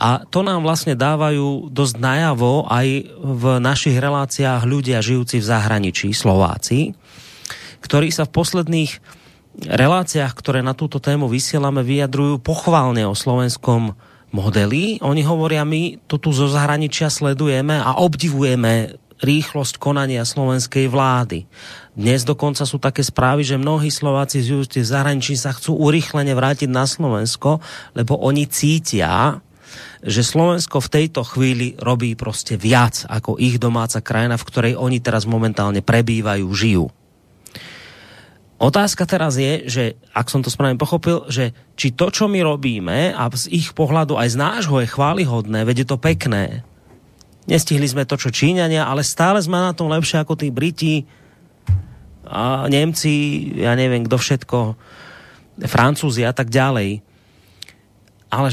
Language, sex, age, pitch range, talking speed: Slovak, male, 30-49, 120-150 Hz, 140 wpm